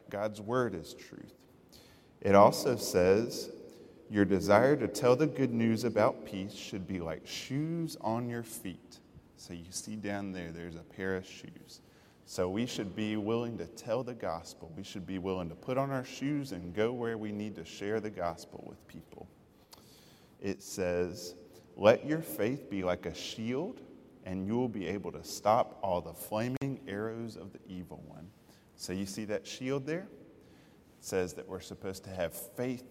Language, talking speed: English, 180 wpm